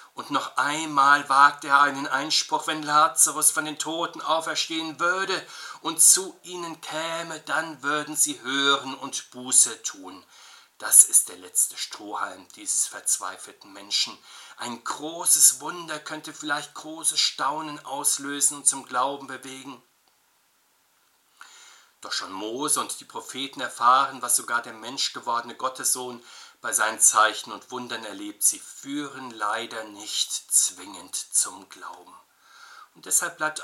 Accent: German